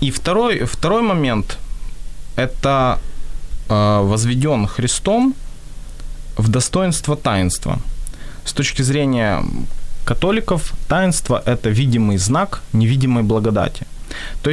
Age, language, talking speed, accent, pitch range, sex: 20-39, Ukrainian, 100 wpm, native, 115-155 Hz, male